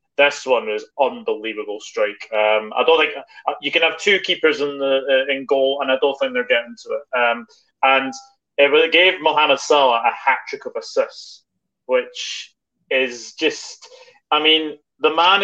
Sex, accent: male, British